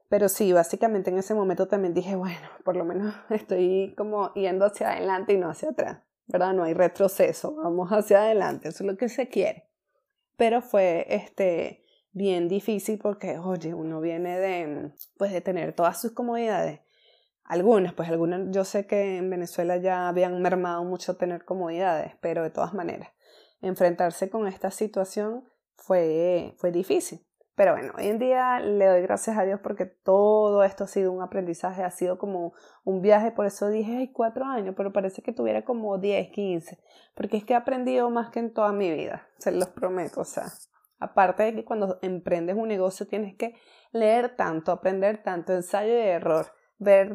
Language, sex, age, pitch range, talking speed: Spanish, female, 20-39, 180-215 Hz, 180 wpm